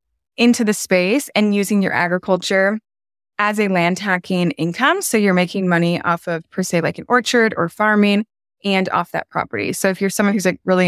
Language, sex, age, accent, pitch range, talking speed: English, female, 20-39, American, 175-215 Hz, 200 wpm